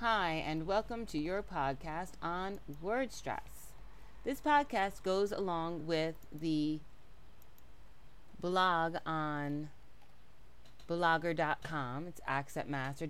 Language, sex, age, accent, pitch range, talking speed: English, female, 30-49, American, 150-195 Hz, 90 wpm